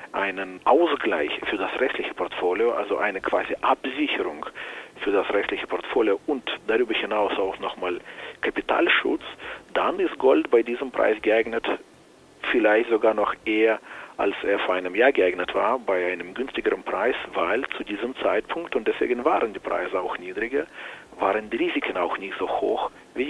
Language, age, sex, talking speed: German, 40-59, male, 155 wpm